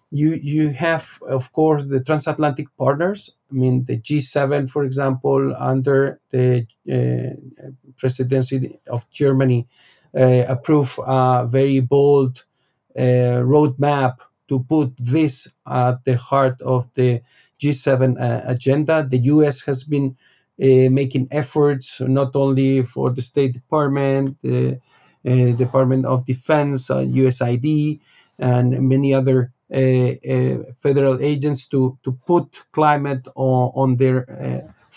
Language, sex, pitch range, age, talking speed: English, male, 130-145 Hz, 50-69, 125 wpm